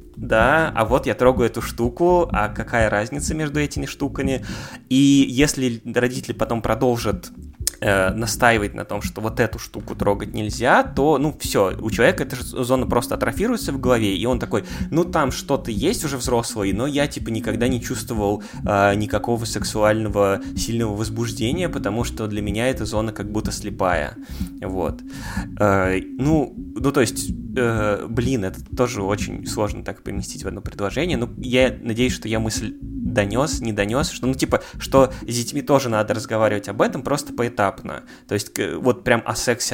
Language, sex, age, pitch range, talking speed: Russian, male, 20-39, 100-125 Hz, 170 wpm